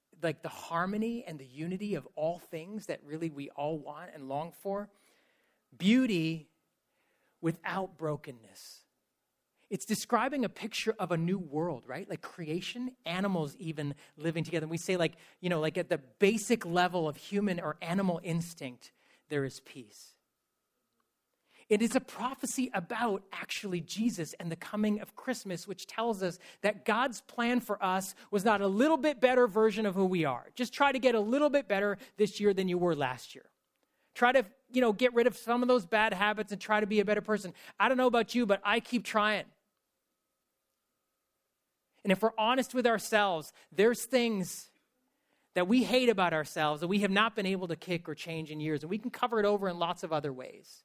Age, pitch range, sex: 30-49, 165-230 Hz, male